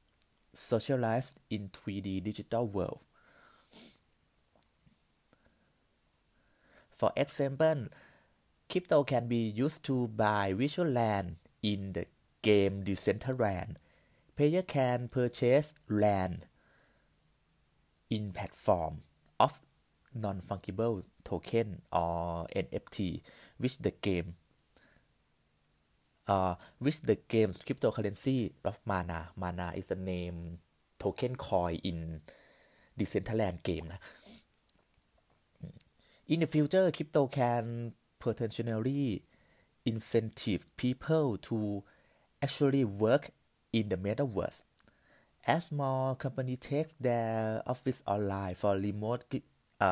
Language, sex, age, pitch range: Thai, male, 20-39, 95-130 Hz